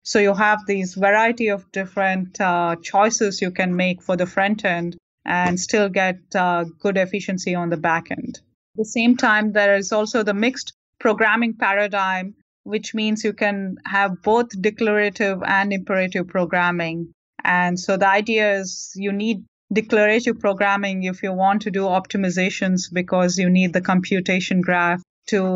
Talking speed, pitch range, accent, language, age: 160 wpm, 180-205 Hz, Indian, English, 20-39